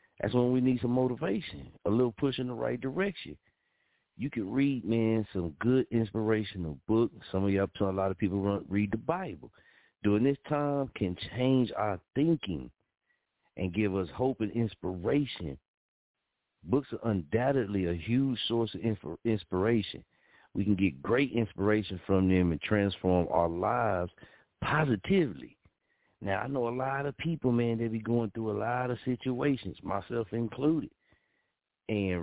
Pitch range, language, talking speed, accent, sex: 100-125 Hz, English, 155 wpm, American, male